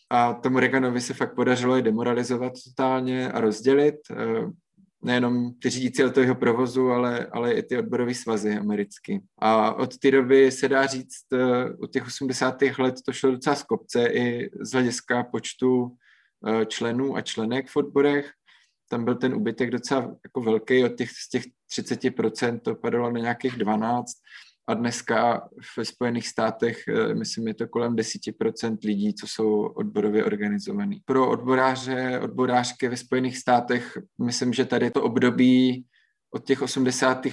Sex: male